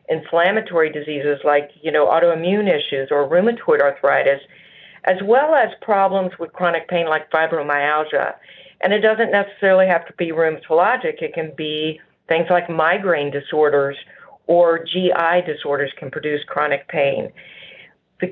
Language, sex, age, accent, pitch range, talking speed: English, female, 50-69, American, 150-185 Hz, 140 wpm